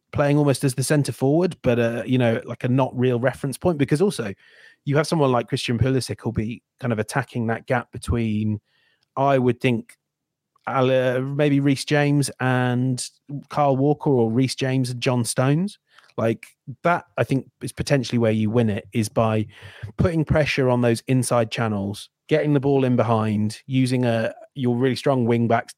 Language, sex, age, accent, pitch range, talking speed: English, male, 30-49, British, 115-135 Hz, 175 wpm